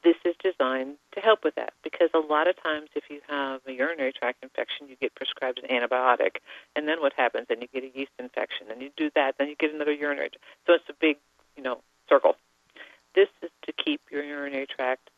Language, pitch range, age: English, 130-170 Hz, 50-69